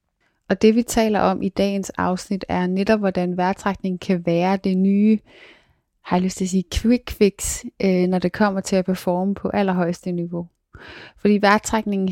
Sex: female